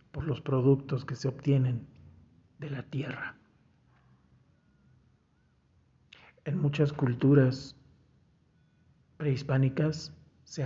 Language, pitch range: Spanish, 125-145 Hz